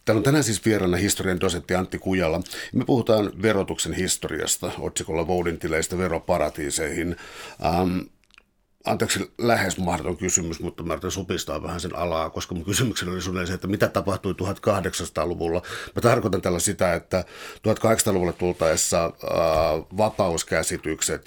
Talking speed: 135 wpm